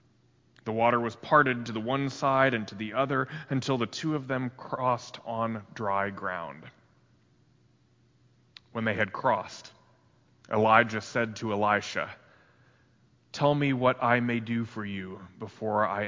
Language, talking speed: English, 145 wpm